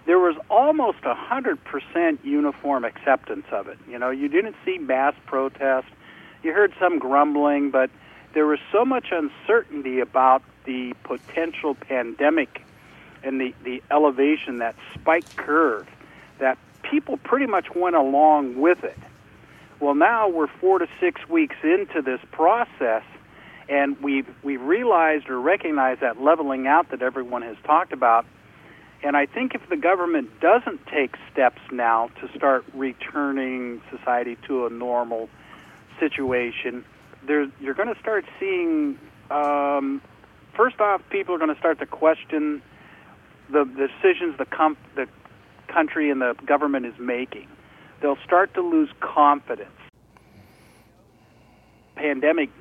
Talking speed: 135 wpm